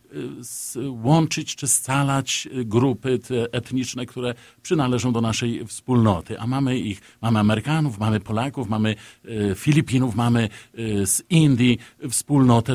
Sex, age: male, 50-69